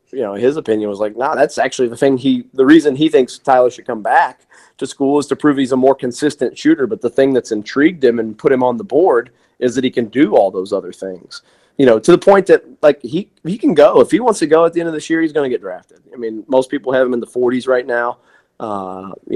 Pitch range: 115-145 Hz